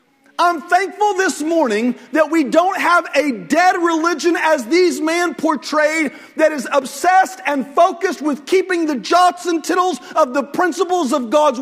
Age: 40-59